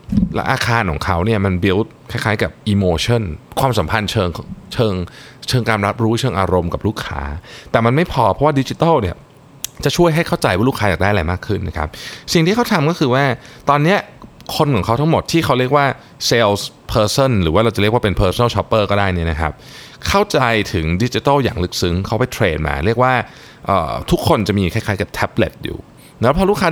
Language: Thai